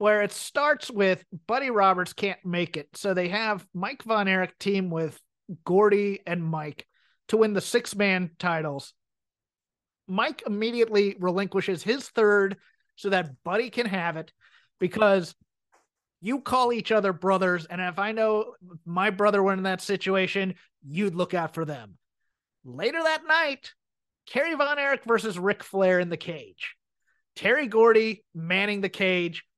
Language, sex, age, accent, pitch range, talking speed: English, male, 30-49, American, 180-225 Hz, 150 wpm